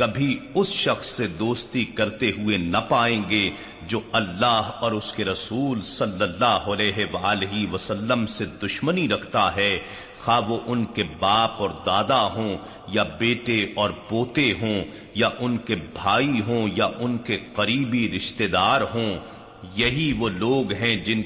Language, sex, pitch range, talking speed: Urdu, male, 105-120 Hz, 155 wpm